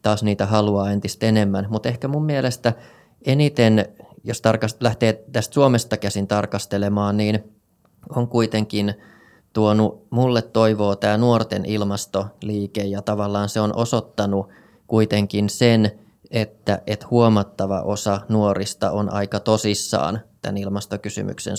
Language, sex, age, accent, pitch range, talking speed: Finnish, male, 20-39, native, 100-110 Hz, 115 wpm